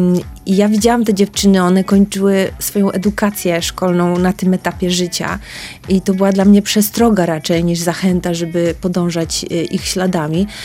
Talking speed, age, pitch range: 145 wpm, 30-49, 180-205 Hz